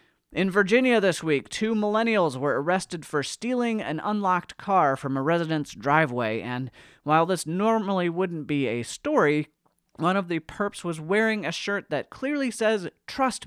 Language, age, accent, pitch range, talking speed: English, 30-49, American, 135-195 Hz, 165 wpm